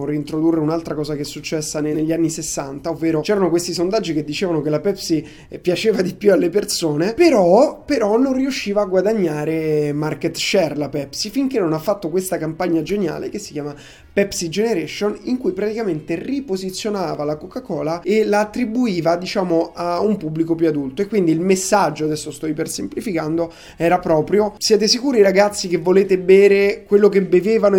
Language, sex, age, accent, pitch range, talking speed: Italian, male, 20-39, native, 160-210 Hz, 170 wpm